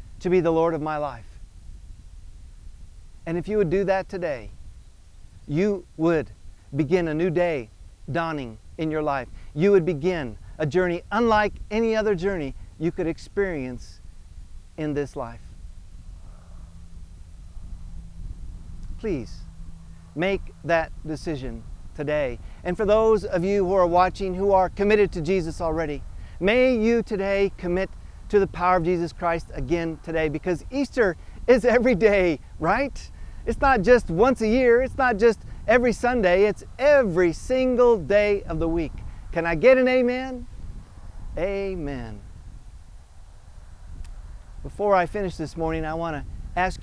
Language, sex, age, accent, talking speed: English, male, 40-59, American, 140 wpm